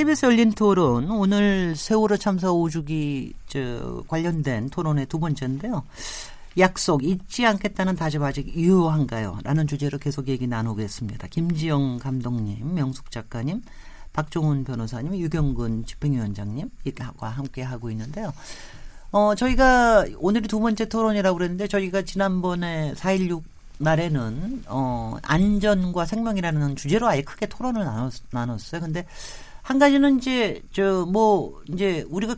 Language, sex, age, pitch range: Korean, male, 40-59, 145-210 Hz